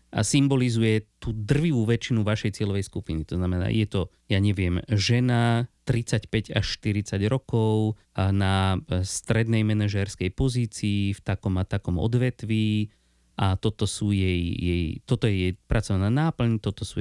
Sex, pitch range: male, 100-115 Hz